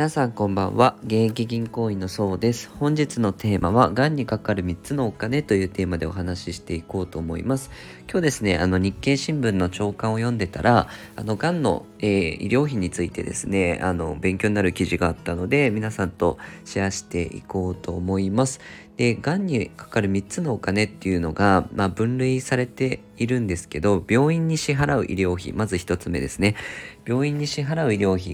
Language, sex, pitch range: Japanese, female, 90-125 Hz